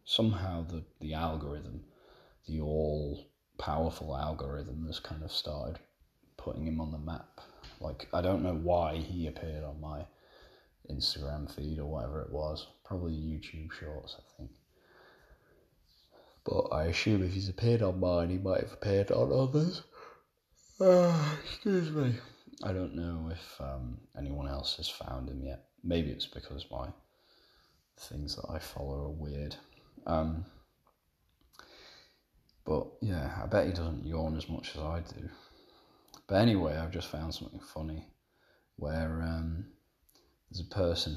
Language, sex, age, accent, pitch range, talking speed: English, male, 30-49, British, 75-90 Hz, 145 wpm